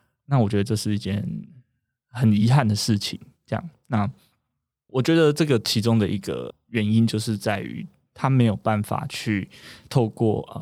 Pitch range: 100-125 Hz